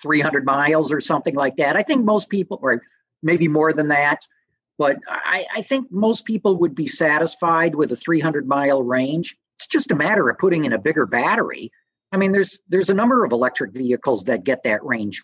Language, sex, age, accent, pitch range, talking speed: English, male, 50-69, American, 145-210 Hz, 205 wpm